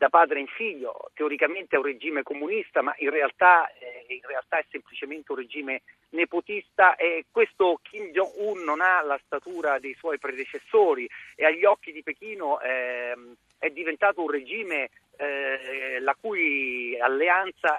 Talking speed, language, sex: 150 wpm, Italian, male